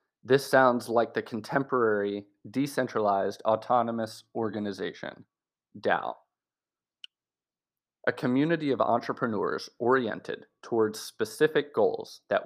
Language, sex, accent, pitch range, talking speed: English, male, American, 110-135 Hz, 85 wpm